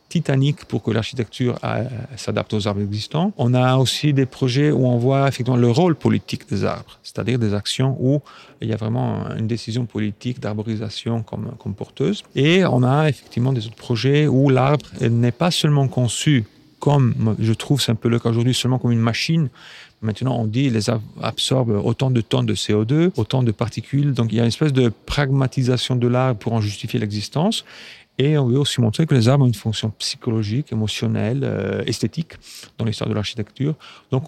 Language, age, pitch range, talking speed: French, 40-59, 110-135 Hz, 195 wpm